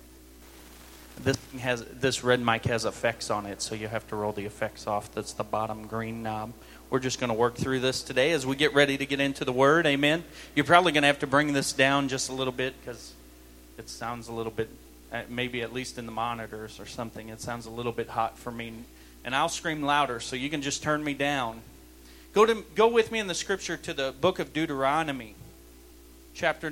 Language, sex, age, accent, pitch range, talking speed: English, male, 30-49, American, 125-170 Hz, 220 wpm